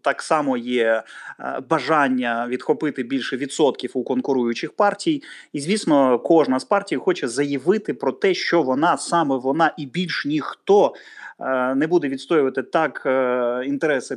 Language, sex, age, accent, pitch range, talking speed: Ukrainian, male, 30-49, native, 130-185 Hz, 130 wpm